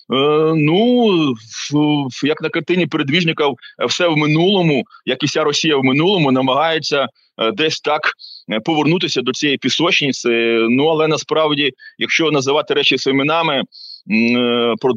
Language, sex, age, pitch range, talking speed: Ukrainian, male, 30-49, 125-155 Hz, 120 wpm